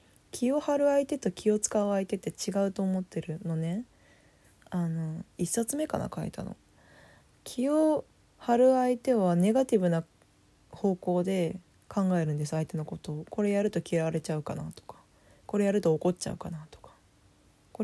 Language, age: Japanese, 20-39